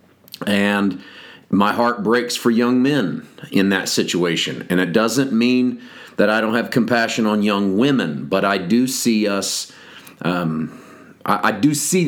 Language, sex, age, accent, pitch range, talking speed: English, male, 40-59, American, 100-120 Hz, 160 wpm